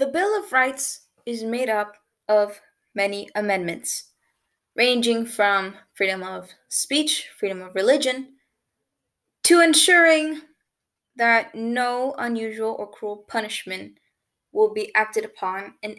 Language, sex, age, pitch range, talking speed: English, female, 20-39, 220-300 Hz, 115 wpm